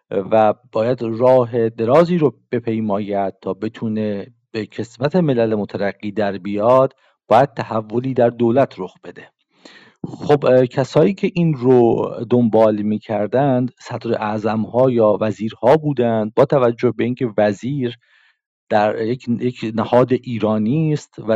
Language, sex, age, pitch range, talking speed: English, male, 50-69, 110-135 Hz, 120 wpm